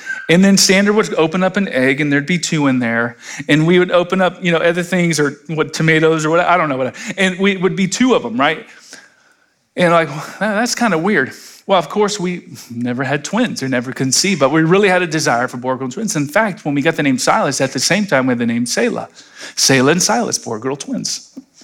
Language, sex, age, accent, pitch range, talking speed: English, male, 40-59, American, 130-185 Hz, 255 wpm